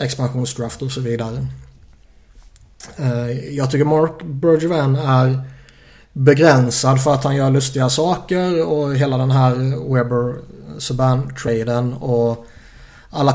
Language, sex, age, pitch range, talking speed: Swedish, male, 20-39, 120-145 Hz, 105 wpm